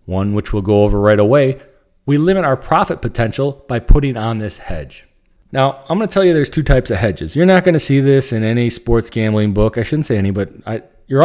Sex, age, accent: male, 40-59, American